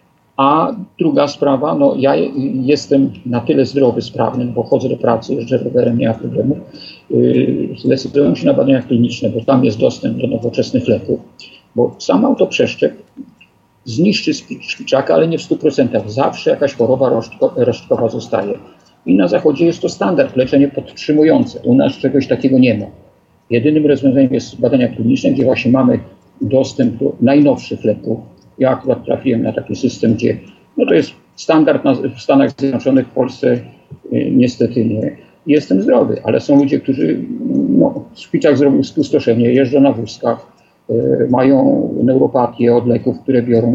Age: 50-69